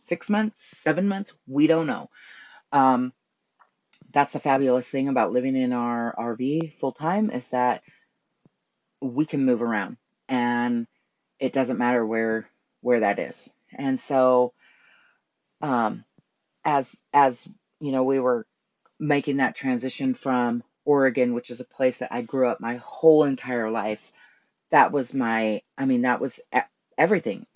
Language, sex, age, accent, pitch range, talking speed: English, female, 30-49, American, 125-155 Hz, 145 wpm